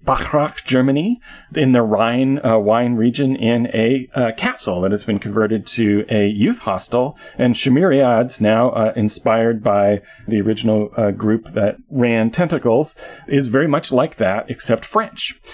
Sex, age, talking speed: male, 40-59, 155 wpm